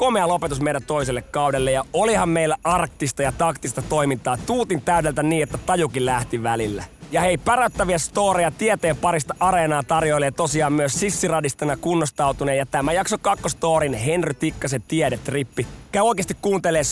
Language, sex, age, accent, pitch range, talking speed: Finnish, male, 30-49, native, 140-190 Hz, 145 wpm